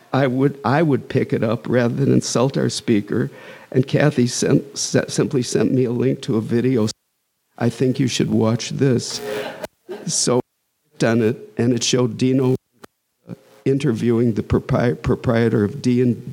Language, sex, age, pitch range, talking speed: English, male, 50-69, 110-130 Hz, 160 wpm